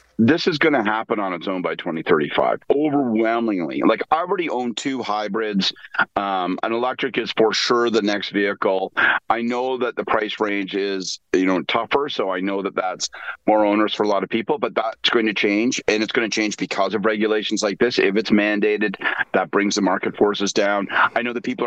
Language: English